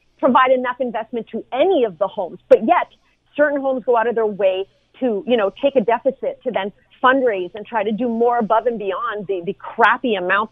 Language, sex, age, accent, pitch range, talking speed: English, female, 40-59, American, 185-240 Hz, 215 wpm